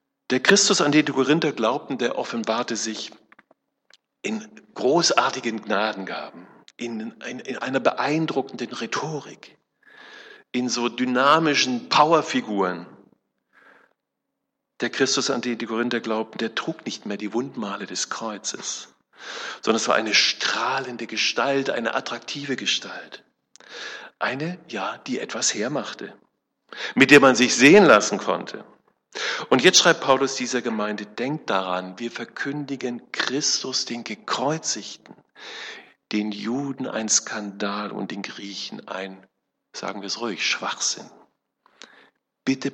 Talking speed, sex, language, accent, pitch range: 120 wpm, male, German, German, 110-140 Hz